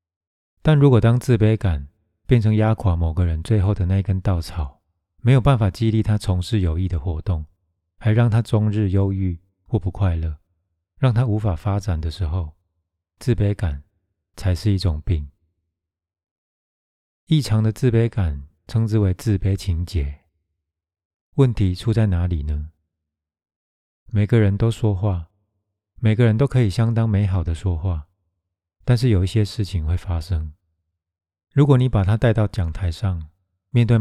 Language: Chinese